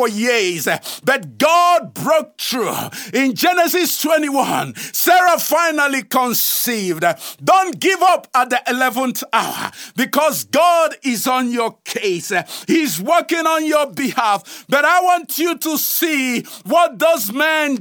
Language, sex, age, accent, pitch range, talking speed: English, male, 50-69, Nigerian, 260-345 Hz, 130 wpm